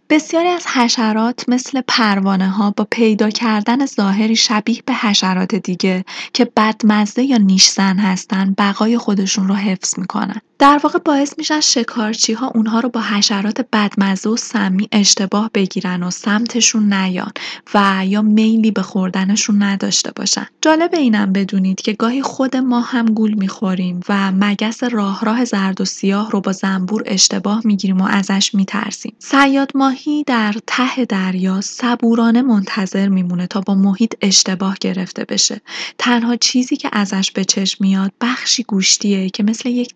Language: Persian